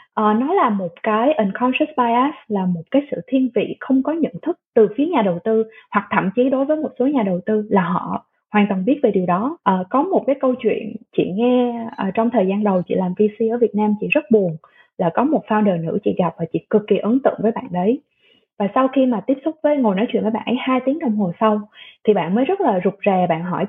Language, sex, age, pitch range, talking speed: Vietnamese, female, 20-39, 205-260 Hz, 265 wpm